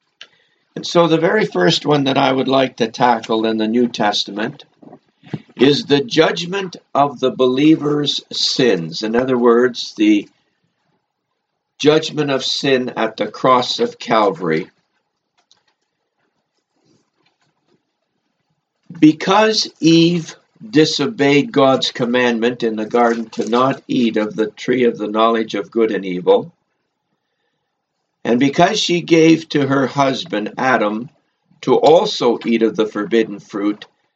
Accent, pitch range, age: American, 120-155 Hz, 60-79